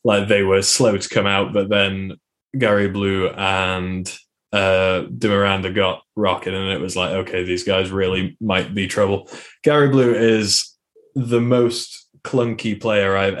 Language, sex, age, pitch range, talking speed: English, male, 20-39, 100-120 Hz, 160 wpm